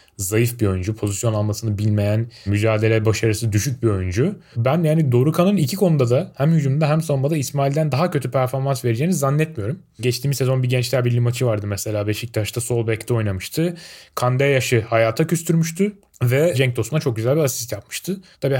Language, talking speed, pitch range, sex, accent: Turkish, 170 wpm, 120-155 Hz, male, native